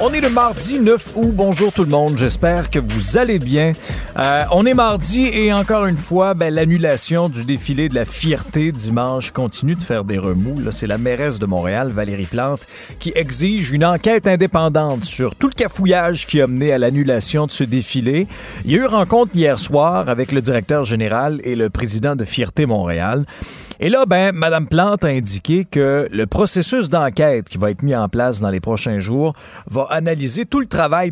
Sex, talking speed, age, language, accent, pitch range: male, 200 wpm, 40-59, French, Canadian, 125-185 Hz